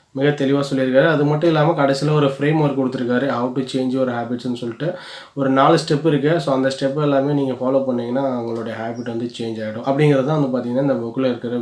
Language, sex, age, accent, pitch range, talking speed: Tamil, male, 20-39, native, 125-140 Hz, 205 wpm